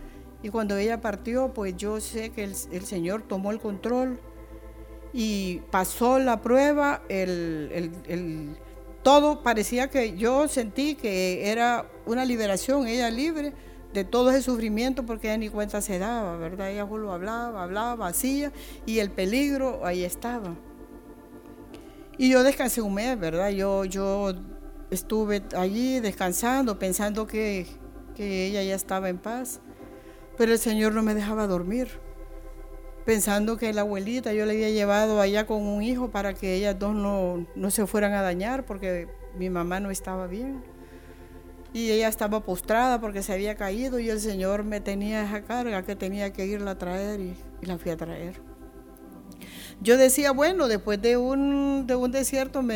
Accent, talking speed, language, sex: American, 160 wpm, Spanish, female